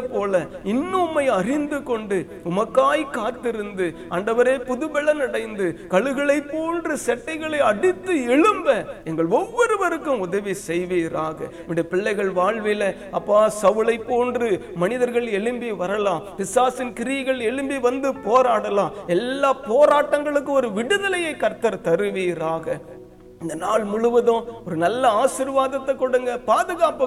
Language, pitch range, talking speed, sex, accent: Tamil, 180-255 Hz, 60 wpm, male, native